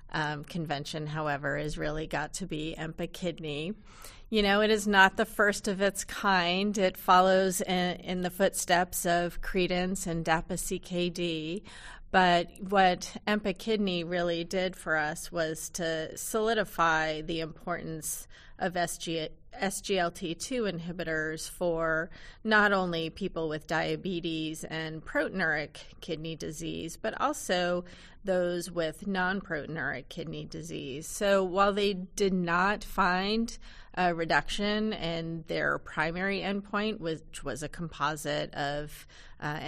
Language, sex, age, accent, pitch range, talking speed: English, female, 30-49, American, 160-195 Hz, 125 wpm